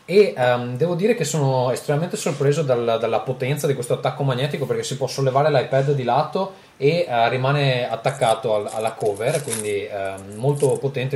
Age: 20-39